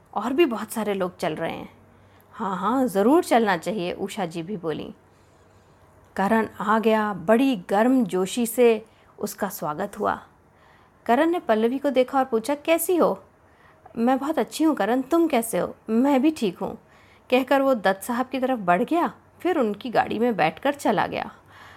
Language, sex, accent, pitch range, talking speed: Hindi, female, native, 205-275 Hz, 175 wpm